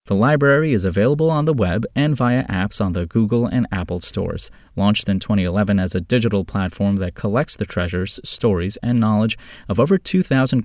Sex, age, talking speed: male, 20-39, 185 wpm